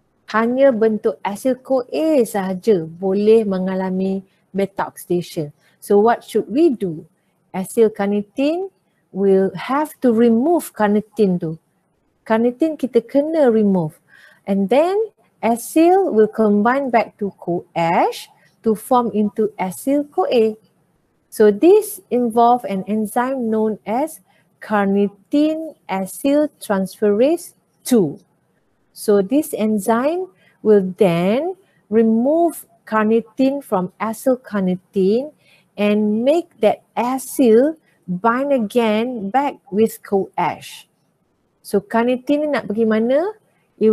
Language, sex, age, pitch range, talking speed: Malay, female, 40-59, 195-260 Hz, 95 wpm